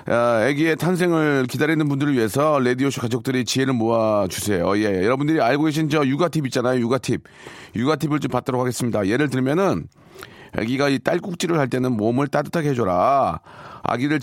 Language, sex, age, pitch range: Korean, male, 40-59, 120-155 Hz